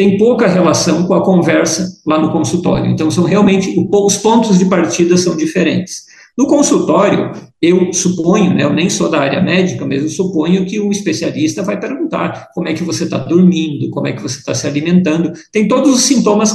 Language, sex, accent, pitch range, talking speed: Portuguese, male, Brazilian, 160-200 Hz, 200 wpm